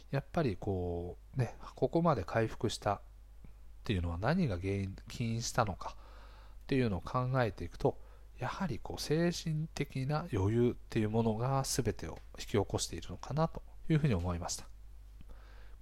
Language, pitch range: Japanese, 100-135 Hz